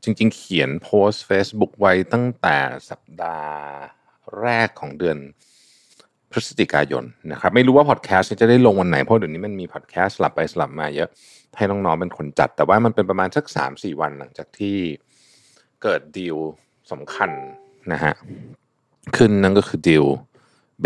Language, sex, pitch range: Thai, male, 85-130 Hz